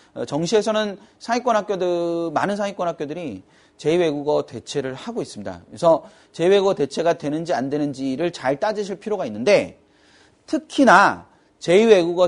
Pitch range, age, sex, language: 145-230 Hz, 40-59, male, Korean